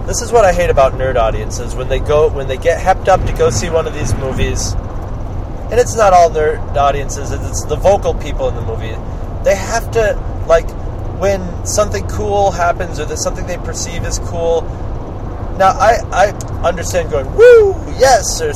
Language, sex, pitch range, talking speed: English, male, 95-135 Hz, 190 wpm